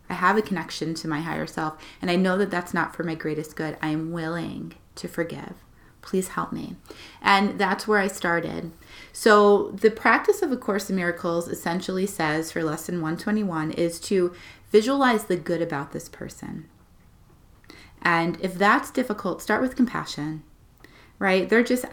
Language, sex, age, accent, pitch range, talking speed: English, female, 30-49, American, 155-195 Hz, 170 wpm